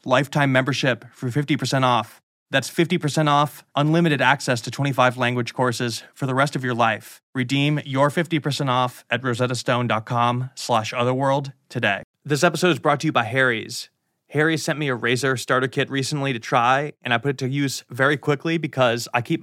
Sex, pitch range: male, 125-150 Hz